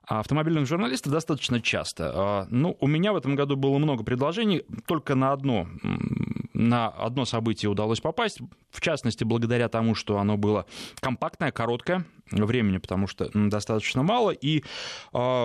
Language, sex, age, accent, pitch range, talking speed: Russian, male, 20-39, native, 110-150 Hz, 145 wpm